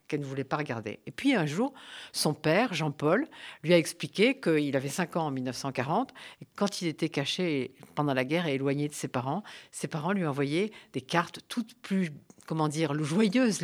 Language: French